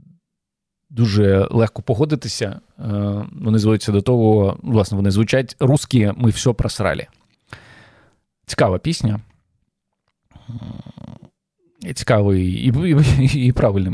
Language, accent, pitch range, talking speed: Ukrainian, native, 105-135 Hz, 95 wpm